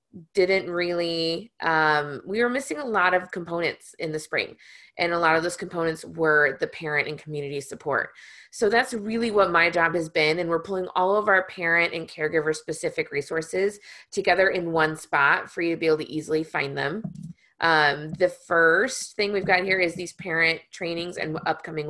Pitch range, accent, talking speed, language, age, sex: 165-205 Hz, American, 190 wpm, English, 20-39, female